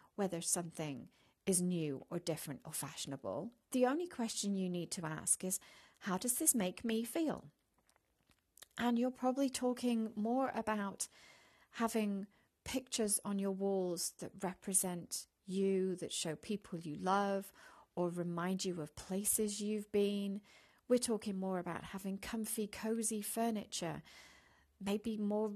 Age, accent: 40-59, British